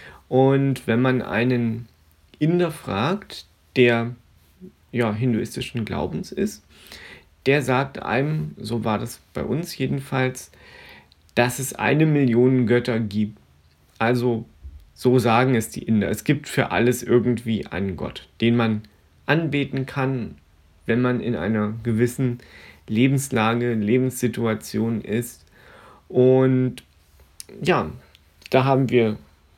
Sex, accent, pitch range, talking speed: male, German, 95-130 Hz, 110 wpm